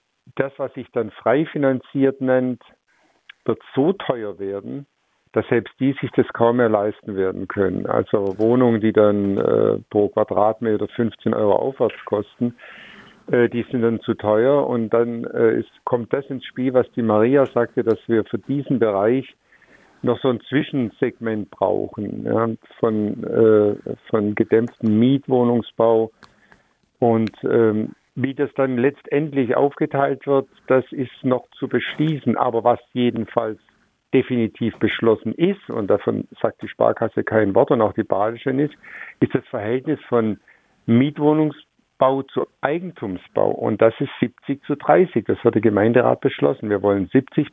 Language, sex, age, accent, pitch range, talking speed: German, male, 50-69, German, 110-135 Hz, 145 wpm